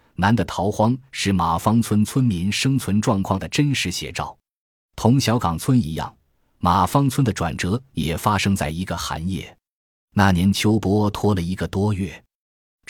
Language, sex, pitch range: Chinese, male, 85-120 Hz